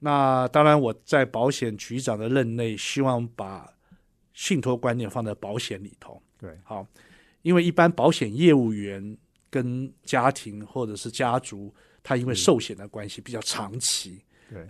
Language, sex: Chinese, male